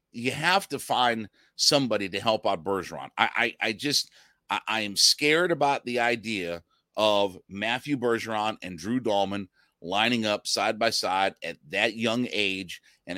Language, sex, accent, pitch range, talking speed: English, male, American, 105-135 Hz, 160 wpm